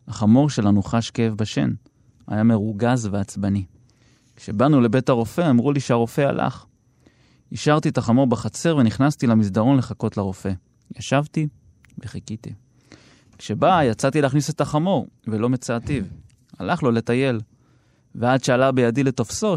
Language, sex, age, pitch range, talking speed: Hebrew, male, 30-49, 115-145 Hz, 120 wpm